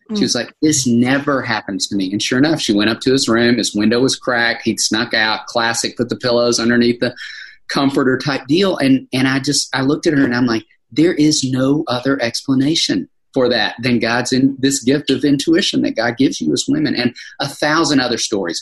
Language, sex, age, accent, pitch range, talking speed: English, male, 40-59, American, 105-140 Hz, 220 wpm